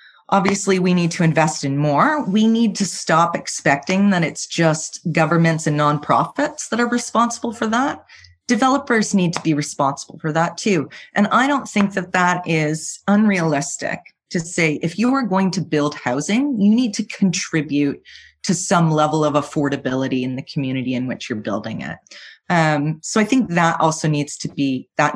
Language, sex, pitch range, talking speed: English, female, 155-205 Hz, 180 wpm